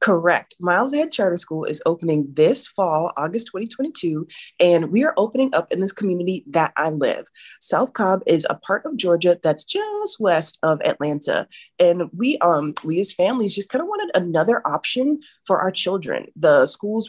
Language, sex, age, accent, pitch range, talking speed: English, female, 30-49, American, 175-250 Hz, 180 wpm